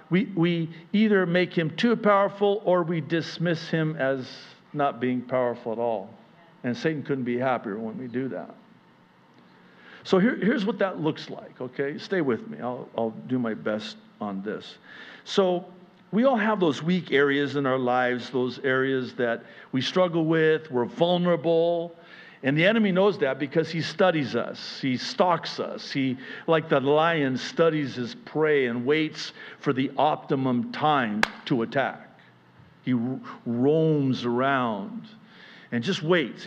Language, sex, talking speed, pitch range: English, male, 155 wpm, 130-200 Hz